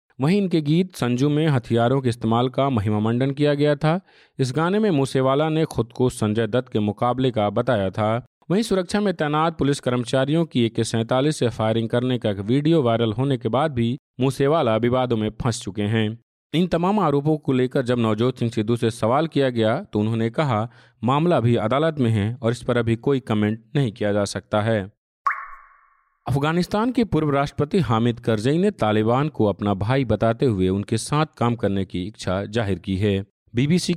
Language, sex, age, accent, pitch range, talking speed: Hindi, male, 40-59, native, 110-140 Hz, 190 wpm